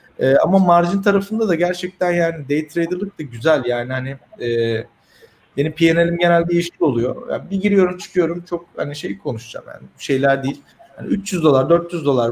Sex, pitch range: male, 135-175 Hz